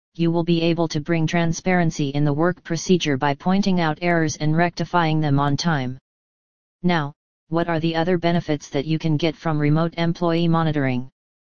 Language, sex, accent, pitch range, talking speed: English, female, American, 150-180 Hz, 175 wpm